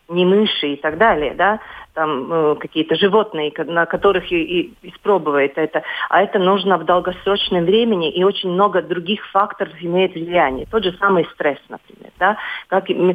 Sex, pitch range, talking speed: female, 170-220 Hz, 165 wpm